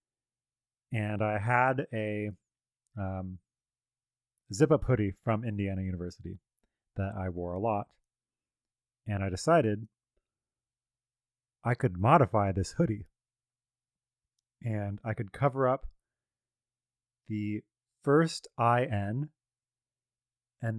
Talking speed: 95 wpm